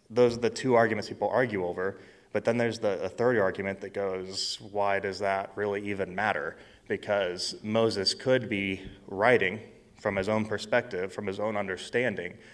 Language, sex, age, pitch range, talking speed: English, male, 30-49, 95-110 Hz, 165 wpm